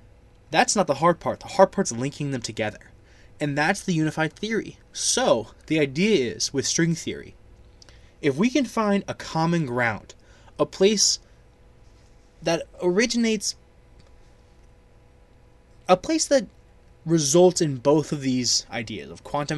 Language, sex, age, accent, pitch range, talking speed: English, male, 20-39, American, 115-185 Hz, 140 wpm